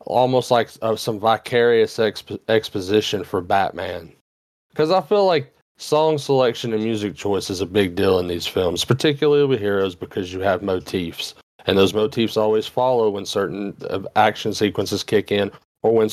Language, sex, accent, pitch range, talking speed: English, male, American, 100-125 Hz, 165 wpm